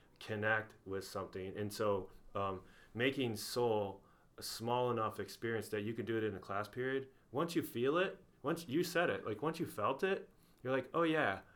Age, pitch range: 30-49, 100-130 Hz